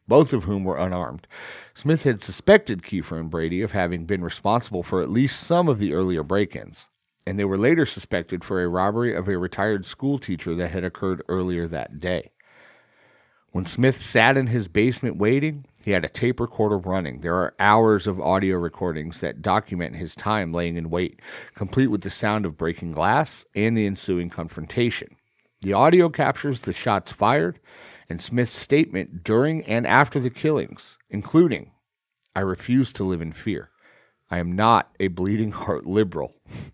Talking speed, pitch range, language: 175 wpm, 90-115 Hz, English